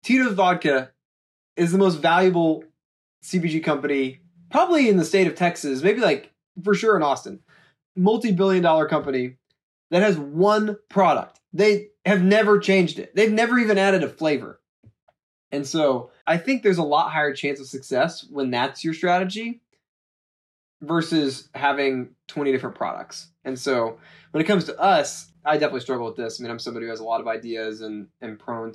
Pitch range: 120-180 Hz